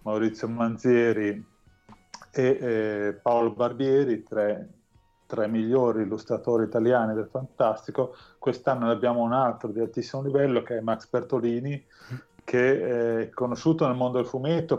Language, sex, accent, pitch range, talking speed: Italian, male, native, 110-125 Hz, 125 wpm